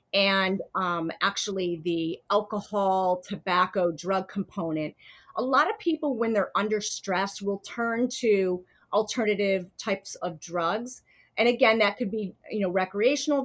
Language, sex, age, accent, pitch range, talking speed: English, female, 30-49, American, 190-240 Hz, 140 wpm